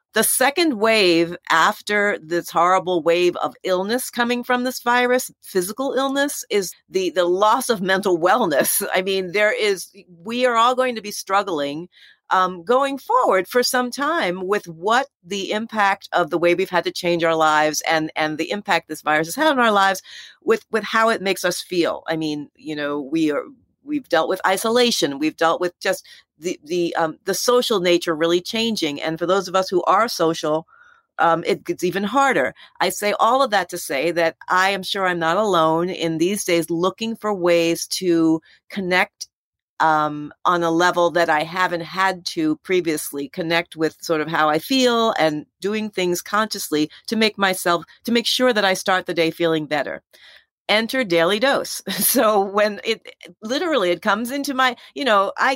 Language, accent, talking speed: English, American, 190 wpm